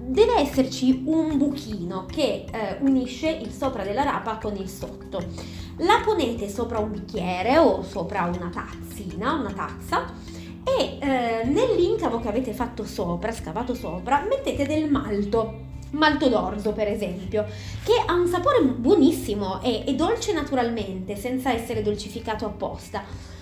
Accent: native